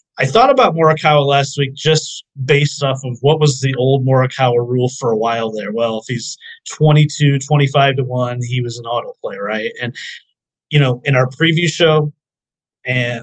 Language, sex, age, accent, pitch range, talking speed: English, male, 30-49, American, 115-140 Hz, 180 wpm